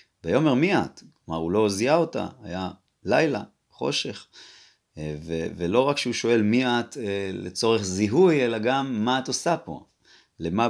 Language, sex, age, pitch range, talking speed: Hebrew, male, 30-49, 95-135 Hz, 150 wpm